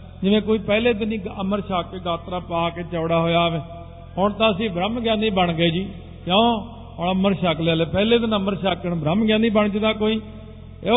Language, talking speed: Punjabi, 185 wpm